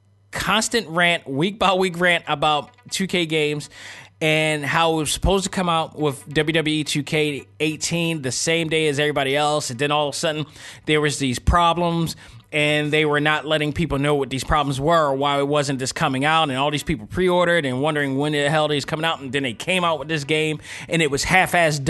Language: English